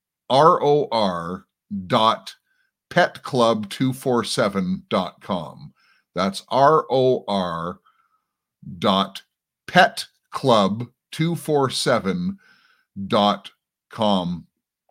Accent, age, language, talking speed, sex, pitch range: American, 50-69, English, 45 wpm, male, 100-160 Hz